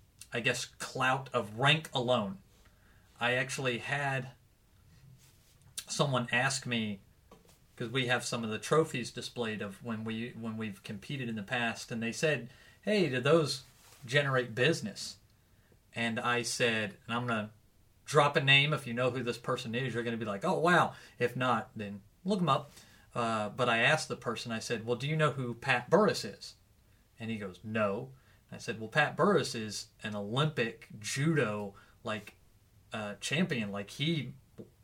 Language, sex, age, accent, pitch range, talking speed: English, male, 30-49, American, 110-135 Hz, 180 wpm